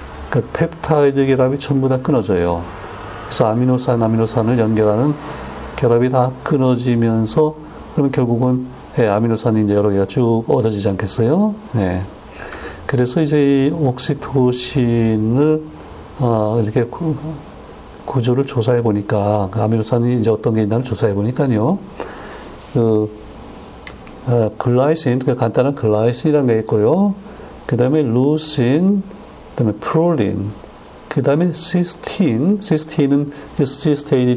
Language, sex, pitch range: Korean, male, 110-145 Hz